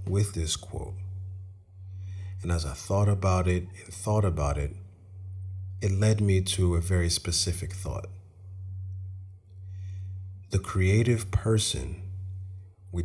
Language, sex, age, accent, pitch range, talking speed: English, male, 40-59, American, 90-95 Hz, 115 wpm